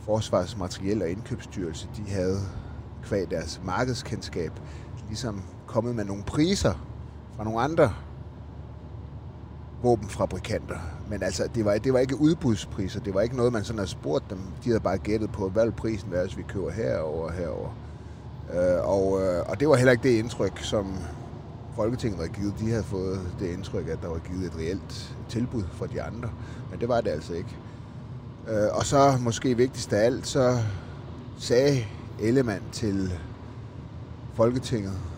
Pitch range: 95-120 Hz